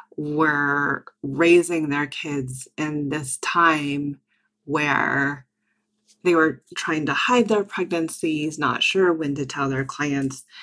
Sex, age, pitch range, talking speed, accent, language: female, 30-49, 140-170 Hz, 125 wpm, American, English